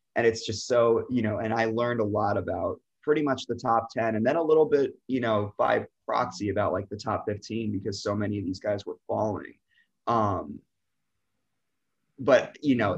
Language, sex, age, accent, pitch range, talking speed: English, male, 20-39, American, 105-120 Hz, 200 wpm